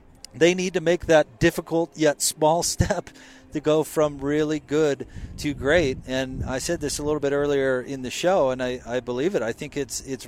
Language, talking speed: English, 210 wpm